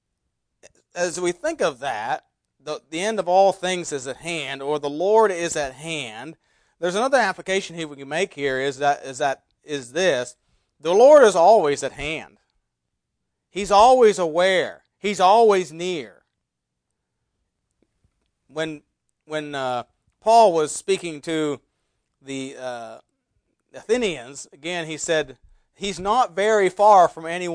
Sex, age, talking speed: male, 40-59, 140 wpm